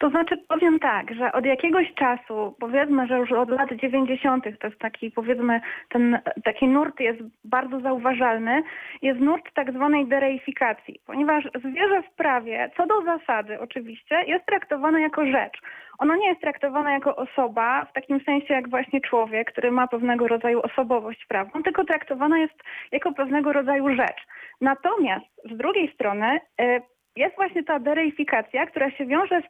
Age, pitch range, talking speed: 30-49, 255-315 Hz, 160 wpm